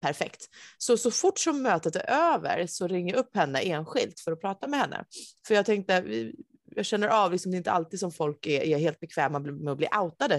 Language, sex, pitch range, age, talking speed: Swedish, female, 155-240 Hz, 30-49, 230 wpm